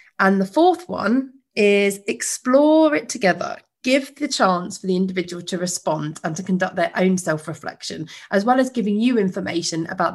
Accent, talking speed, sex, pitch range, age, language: British, 170 wpm, female, 175-235 Hz, 30-49, English